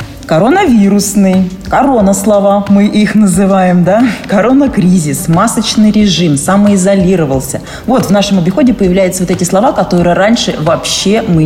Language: Russian